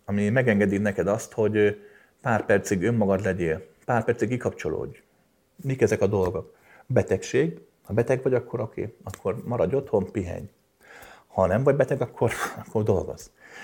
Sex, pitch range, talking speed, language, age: male, 100-120 Hz, 145 wpm, Hungarian, 30-49